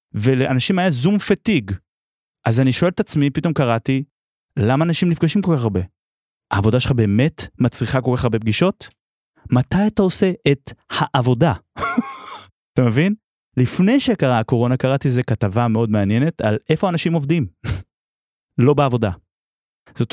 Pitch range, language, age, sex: 125-185 Hz, Hebrew, 30-49, male